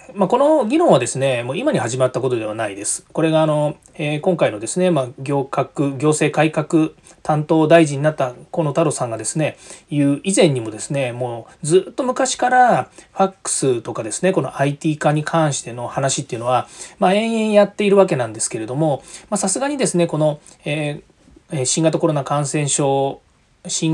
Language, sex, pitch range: Japanese, male, 135-180 Hz